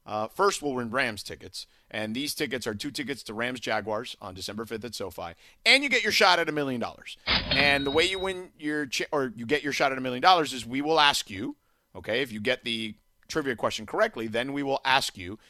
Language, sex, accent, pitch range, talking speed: English, male, American, 120-195 Hz, 245 wpm